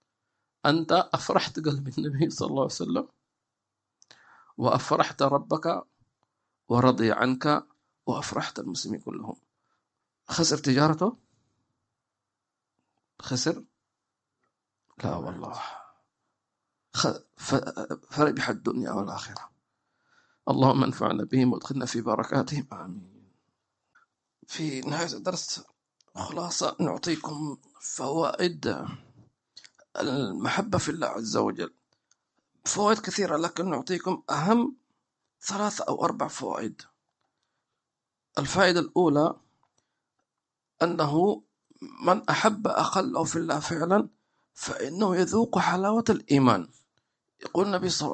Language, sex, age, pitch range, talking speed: English, male, 50-69, 140-210 Hz, 85 wpm